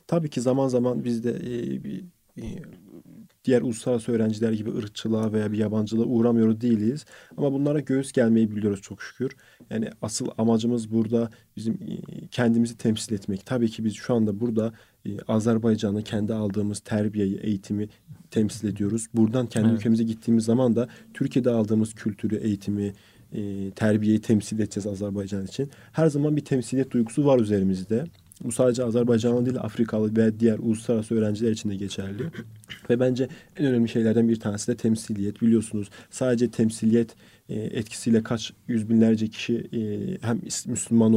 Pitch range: 110-120 Hz